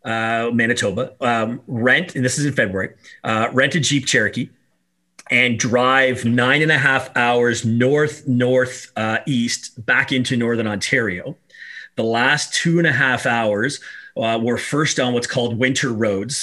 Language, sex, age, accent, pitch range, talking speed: English, male, 30-49, American, 115-140 Hz, 160 wpm